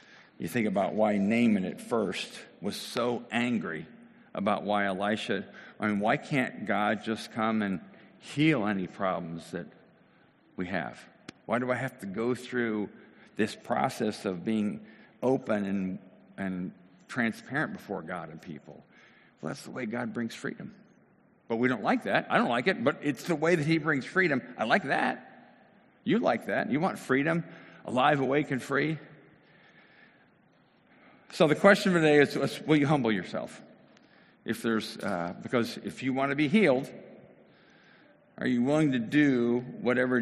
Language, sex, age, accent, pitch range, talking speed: English, male, 50-69, American, 105-145 Hz, 165 wpm